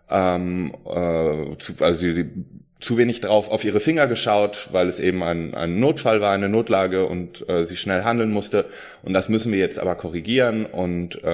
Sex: male